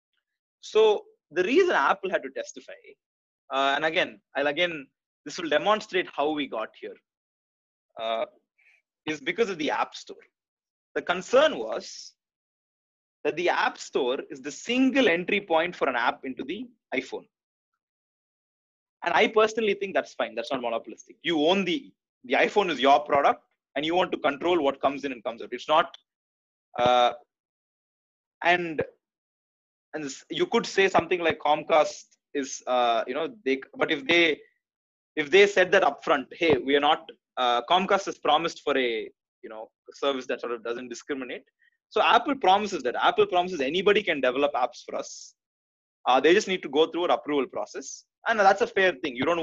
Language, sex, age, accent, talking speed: Tamil, male, 30-49, native, 175 wpm